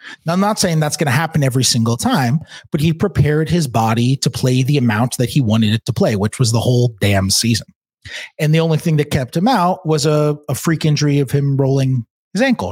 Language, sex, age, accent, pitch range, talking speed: English, male, 30-49, American, 115-155 Hz, 235 wpm